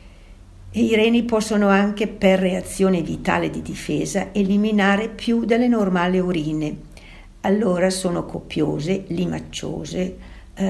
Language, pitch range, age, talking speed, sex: Italian, 170-210 Hz, 60-79, 105 wpm, female